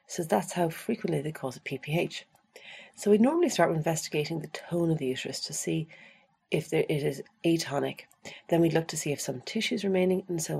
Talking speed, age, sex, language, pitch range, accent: 215 wpm, 40-59, female, English, 145-200 Hz, Irish